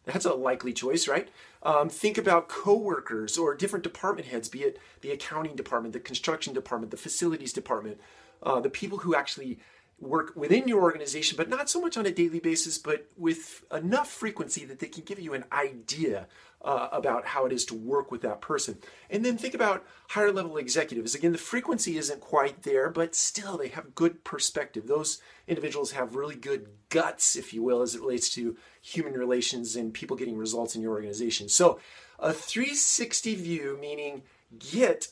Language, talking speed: English, 185 wpm